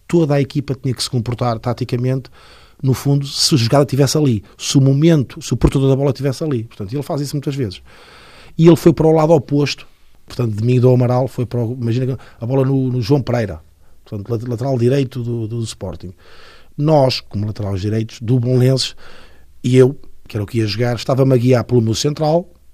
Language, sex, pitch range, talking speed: Portuguese, male, 105-145 Hz, 210 wpm